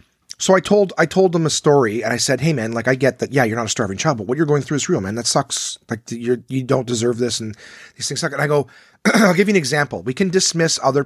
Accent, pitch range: American, 105-140 Hz